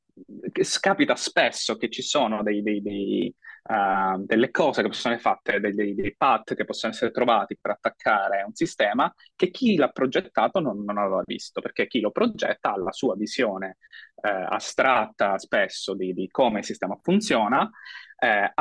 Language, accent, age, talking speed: Italian, native, 20-39, 170 wpm